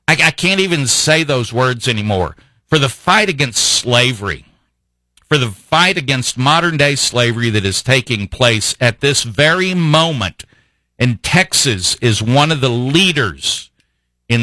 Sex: male